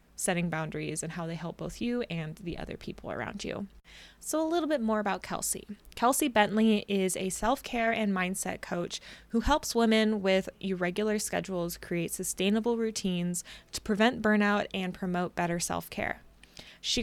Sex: female